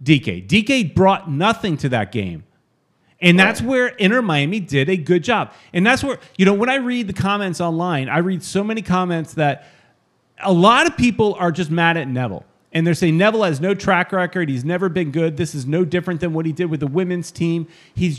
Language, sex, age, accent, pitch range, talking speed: English, male, 30-49, American, 165-205 Hz, 220 wpm